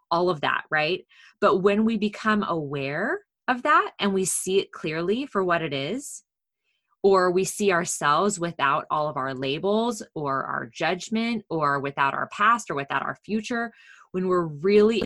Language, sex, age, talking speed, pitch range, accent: English, female, 20-39, 170 wpm, 160-210 Hz, American